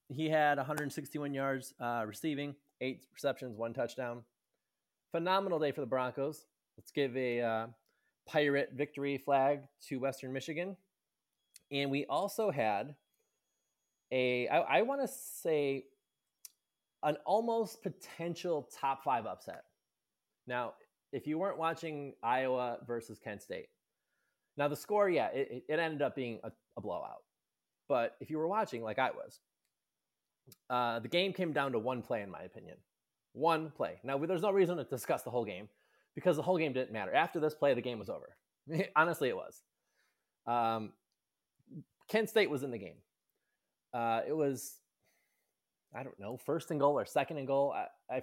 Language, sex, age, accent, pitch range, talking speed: English, male, 20-39, American, 130-170 Hz, 160 wpm